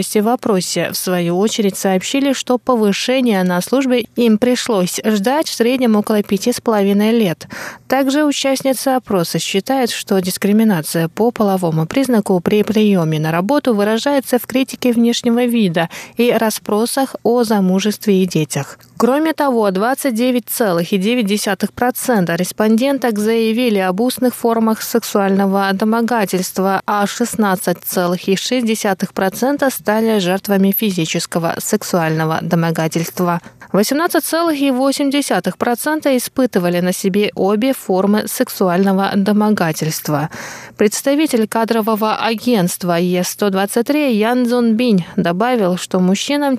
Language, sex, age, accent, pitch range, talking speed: Russian, female, 20-39, native, 190-245 Hz, 100 wpm